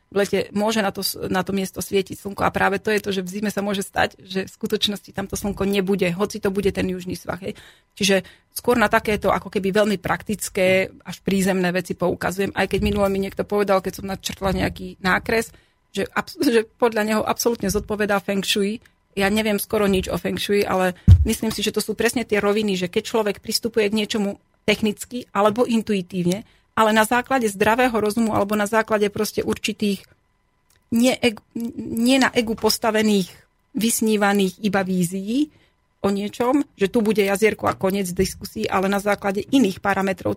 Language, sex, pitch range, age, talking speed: Slovak, female, 195-220 Hz, 30-49, 180 wpm